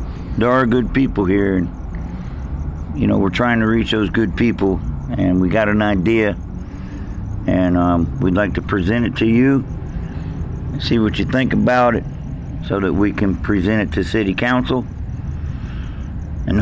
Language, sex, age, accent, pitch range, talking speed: English, male, 50-69, American, 85-110 Hz, 165 wpm